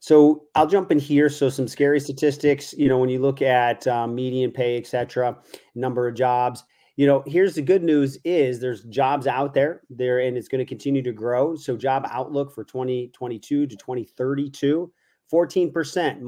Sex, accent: male, American